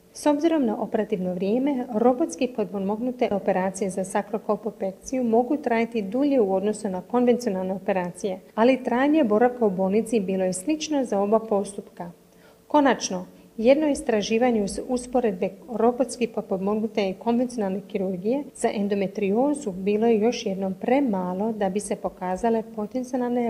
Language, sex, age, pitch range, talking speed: Croatian, female, 40-59, 205-245 Hz, 130 wpm